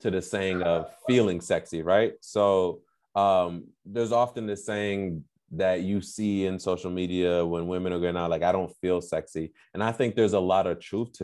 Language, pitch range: English, 90-110 Hz